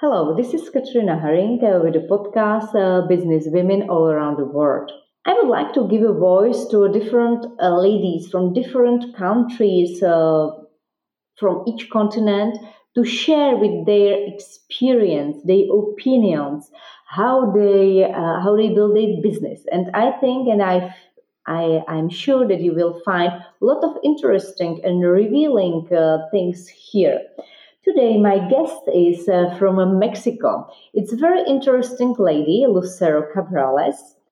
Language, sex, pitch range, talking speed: Czech, female, 170-235 Hz, 150 wpm